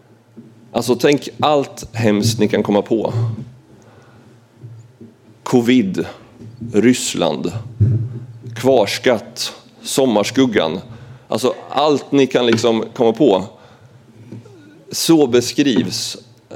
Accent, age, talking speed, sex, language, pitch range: native, 30-49, 75 wpm, male, Swedish, 110-125 Hz